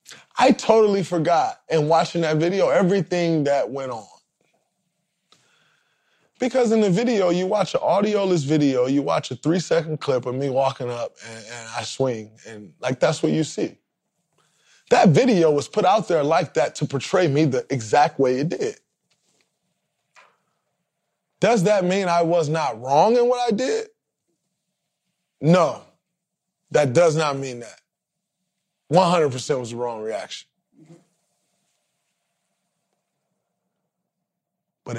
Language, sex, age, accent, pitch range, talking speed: English, male, 20-39, American, 135-195 Hz, 135 wpm